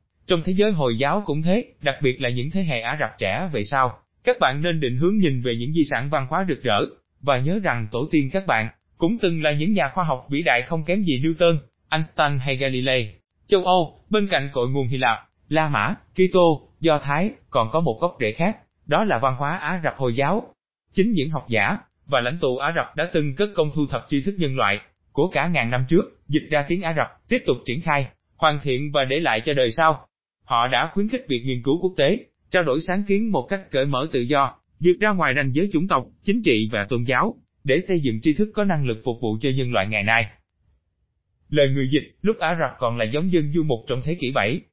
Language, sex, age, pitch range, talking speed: Vietnamese, male, 20-39, 125-175 Hz, 250 wpm